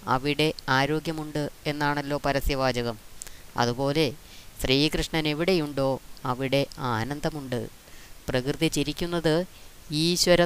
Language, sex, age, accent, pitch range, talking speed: Malayalam, female, 20-39, native, 130-155 Hz, 70 wpm